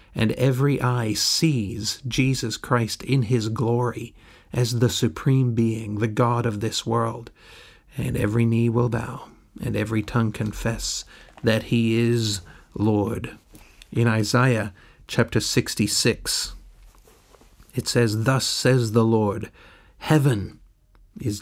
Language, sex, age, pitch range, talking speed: English, male, 50-69, 110-130 Hz, 120 wpm